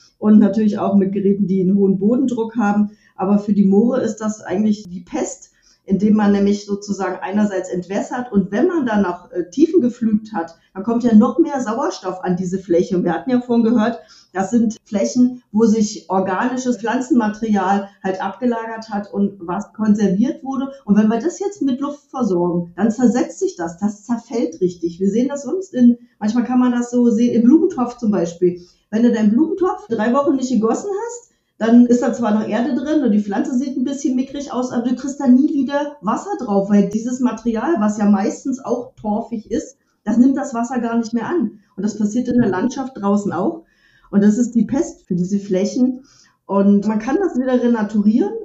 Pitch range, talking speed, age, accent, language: 200-250 Hz, 200 wpm, 40-59, German, German